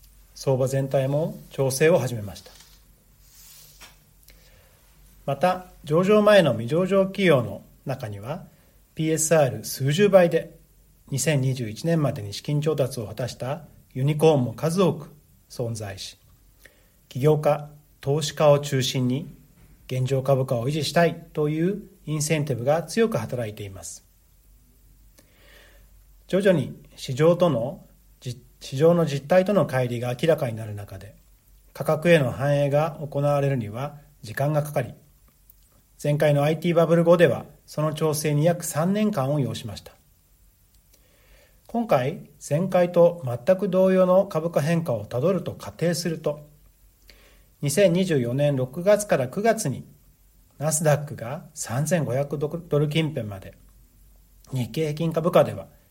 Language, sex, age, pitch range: Japanese, male, 40-59, 120-165 Hz